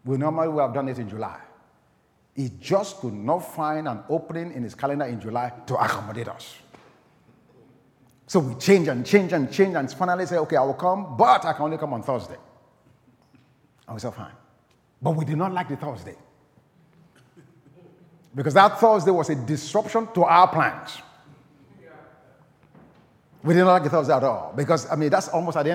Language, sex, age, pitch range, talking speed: English, male, 50-69, 145-205 Hz, 185 wpm